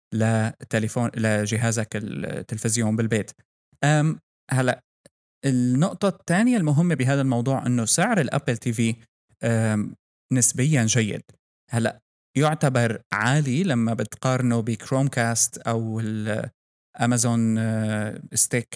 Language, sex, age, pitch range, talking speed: Arabic, male, 20-39, 115-135 Hz, 85 wpm